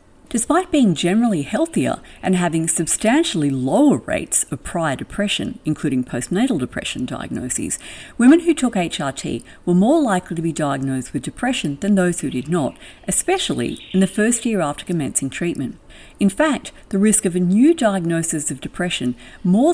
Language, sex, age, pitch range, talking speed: English, female, 50-69, 140-205 Hz, 160 wpm